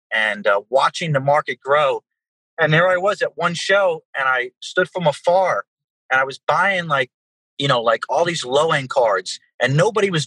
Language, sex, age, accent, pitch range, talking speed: English, male, 30-49, American, 145-200 Hz, 200 wpm